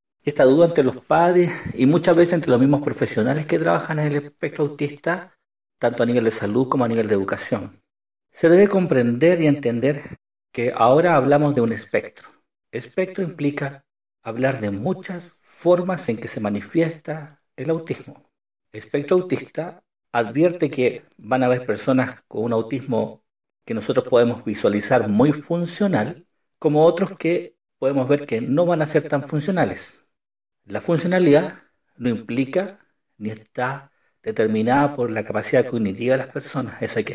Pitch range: 115-155 Hz